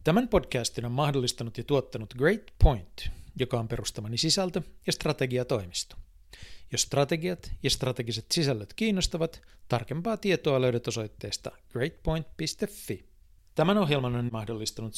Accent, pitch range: native, 115-145 Hz